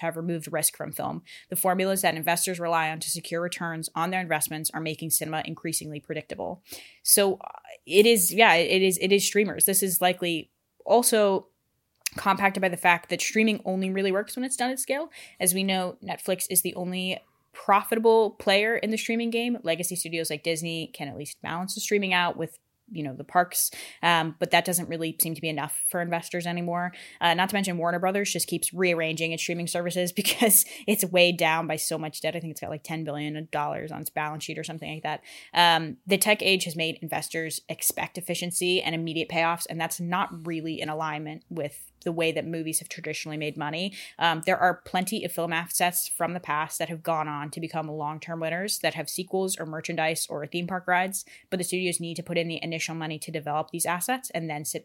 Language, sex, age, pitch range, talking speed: English, female, 20-39, 160-185 Hz, 215 wpm